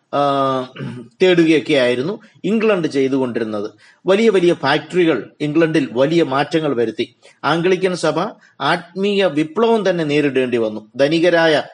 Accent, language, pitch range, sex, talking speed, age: native, Malayalam, 135-190 Hz, male, 95 wpm, 30-49